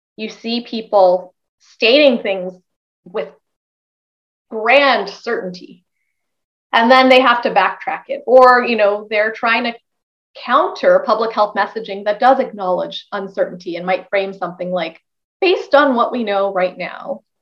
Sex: female